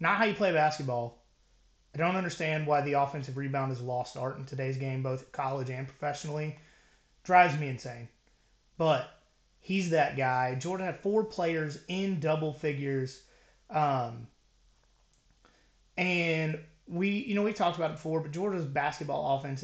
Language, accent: English, American